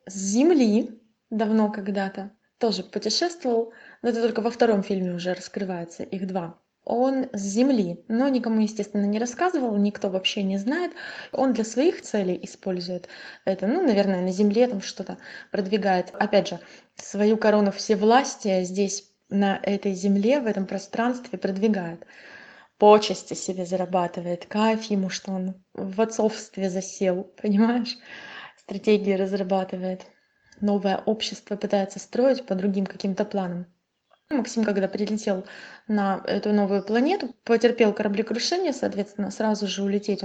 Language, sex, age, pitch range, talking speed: Russian, female, 20-39, 195-235 Hz, 130 wpm